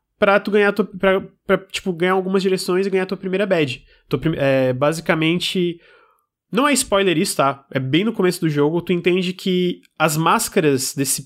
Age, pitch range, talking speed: 20-39, 155-200 Hz, 195 wpm